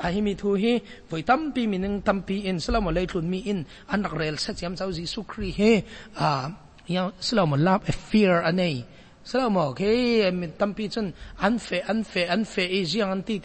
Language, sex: English, male